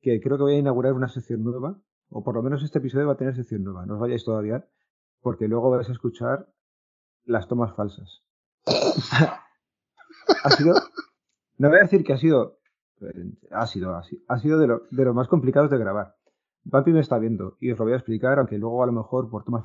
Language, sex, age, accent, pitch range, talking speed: Spanish, male, 30-49, Spanish, 115-145 Hz, 220 wpm